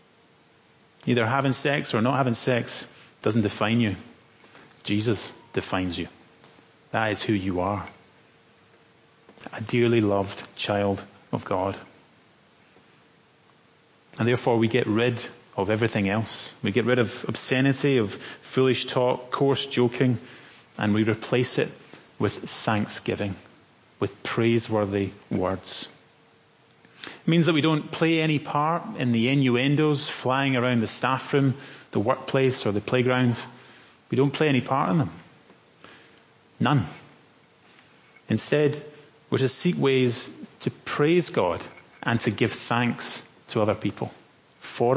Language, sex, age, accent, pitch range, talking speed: English, male, 30-49, British, 110-135 Hz, 130 wpm